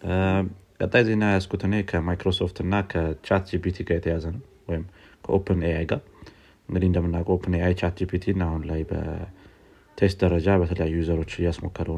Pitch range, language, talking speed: 85-100 Hz, Amharic, 115 wpm